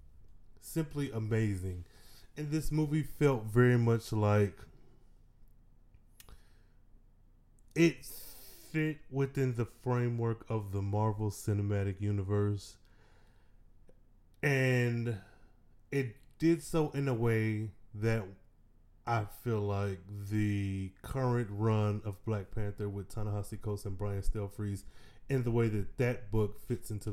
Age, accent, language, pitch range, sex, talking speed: 20-39, American, English, 100-120 Hz, male, 110 wpm